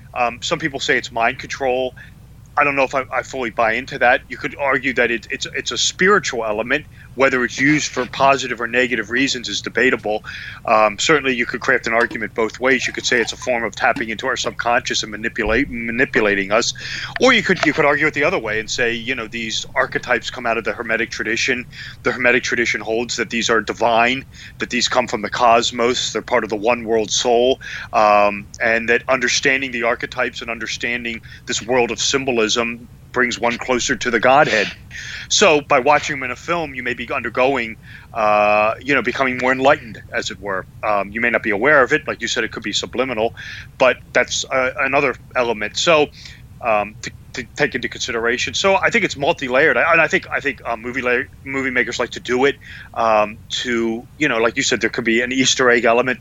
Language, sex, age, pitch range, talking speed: English, male, 30-49, 115-130 Hz, 210 wpm